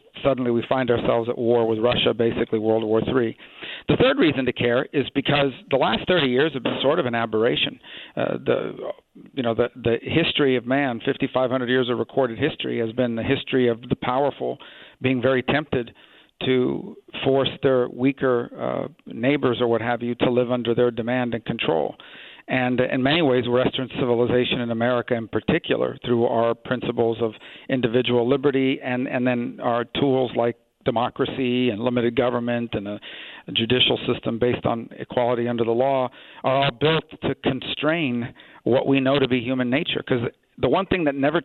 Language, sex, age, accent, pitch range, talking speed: English, male, 50-69, American, 120-135 Hz, 175 wpm